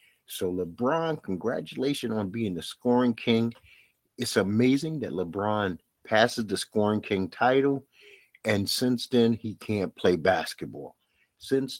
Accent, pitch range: American, 105-140 Hz